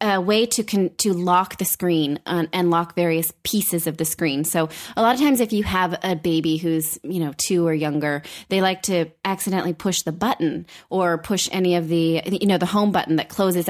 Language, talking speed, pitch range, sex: English, 215 wpm, 165-200 Hz, female